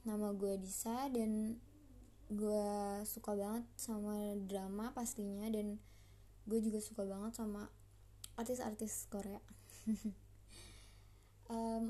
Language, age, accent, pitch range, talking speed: Indonesian, 20-39, native, 200-235 Hz, 95 wpm